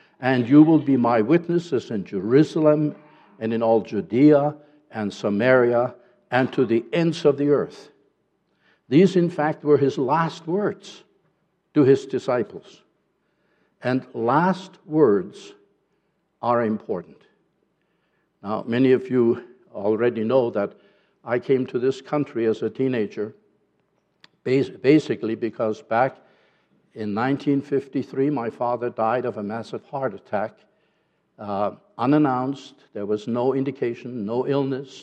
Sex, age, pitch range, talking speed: male, 60-79, 115-150 Hz, 125 wpm